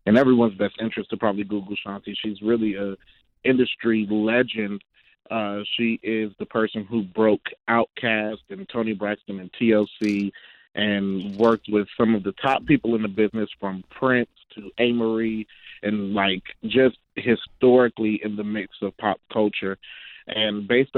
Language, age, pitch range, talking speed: English, 30-49, 100-115 Hz, 150 wpm